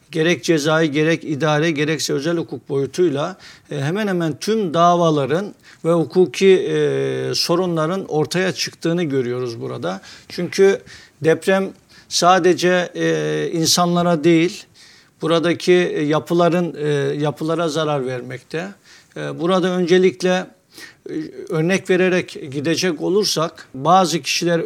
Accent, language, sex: native, Turkish, male